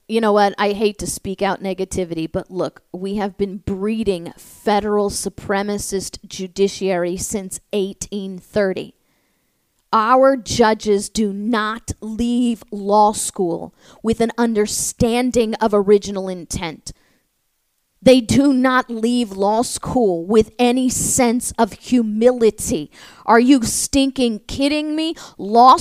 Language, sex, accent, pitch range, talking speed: English, female, American, 205-265 Hz, 115 wpm